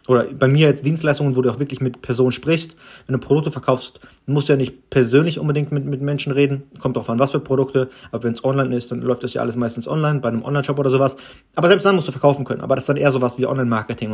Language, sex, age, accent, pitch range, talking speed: German, male, 30-49, German, 125-150 Hz, 270 wpm